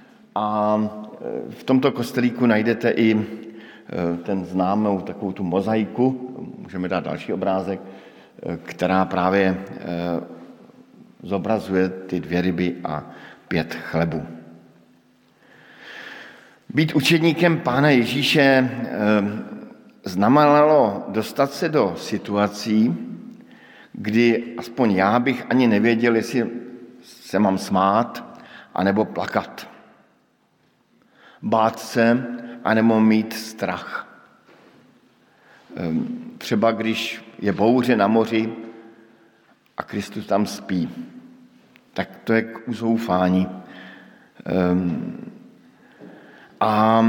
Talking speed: 85 wpm